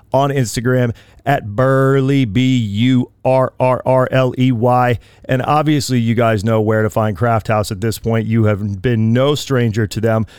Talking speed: 145 wpm